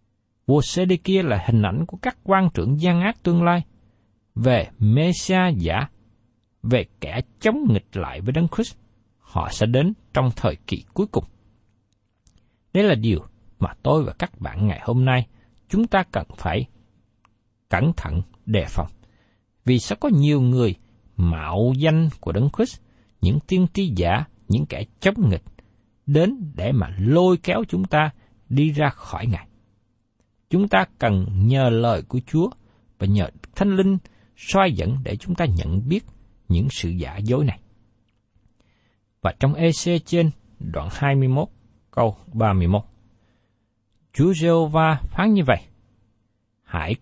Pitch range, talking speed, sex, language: 105-150 Hz, 150 wpm, male, Vietnamese